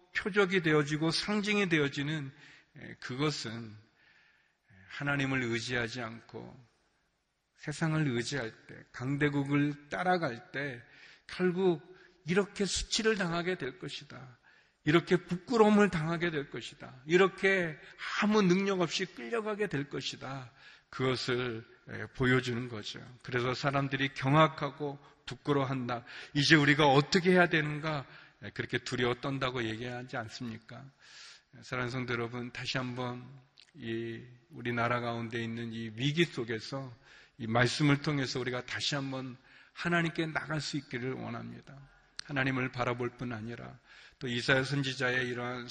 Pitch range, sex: 120-155 Hz, male